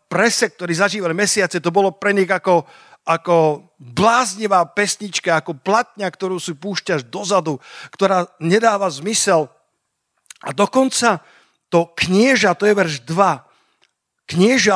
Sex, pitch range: male, 170-220 Hz